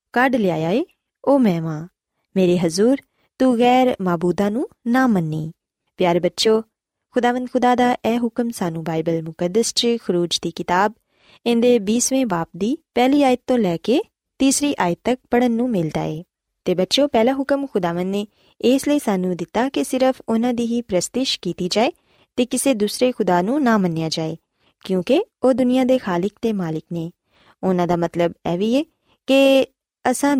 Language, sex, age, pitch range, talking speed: Punjabi, female, 20-39, 180-255 Hz, 120 wpm